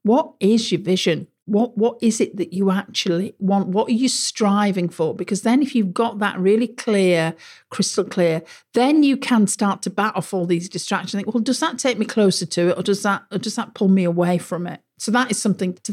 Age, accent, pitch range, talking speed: 50-69, British, 180-220 Hz, 235 wpm